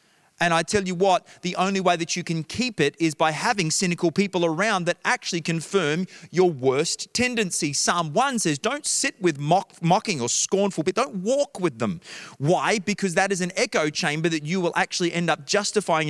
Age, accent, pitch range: 30-49, Australian, 135-180 Hz